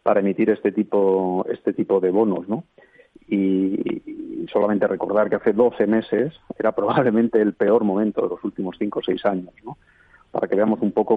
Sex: male